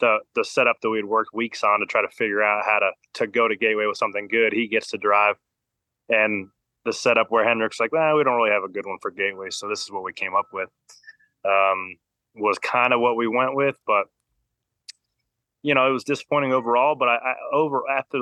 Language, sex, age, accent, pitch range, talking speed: English, male, 20-39, American, 110-130 Hz, 235 wpm